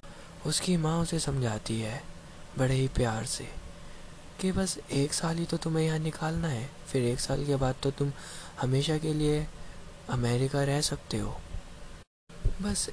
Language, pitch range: Hindi, 115-155 Hz